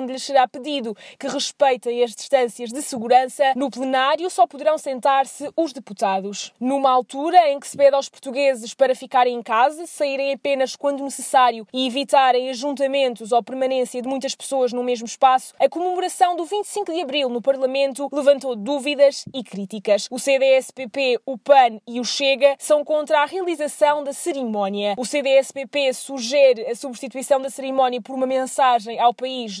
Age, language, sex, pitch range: 20-39, English, female, 250-285 Hz